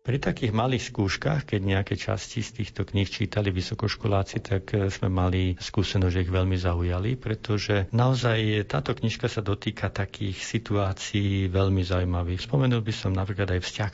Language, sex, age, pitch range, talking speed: Slovak, male, 50-69, 95-110 Hz, 155 wpm